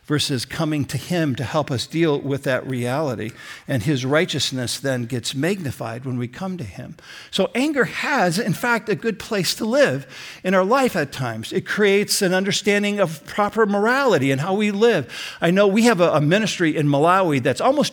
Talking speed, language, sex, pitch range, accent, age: 195 wpm, English, male, 135-185 Hz, American, 50-69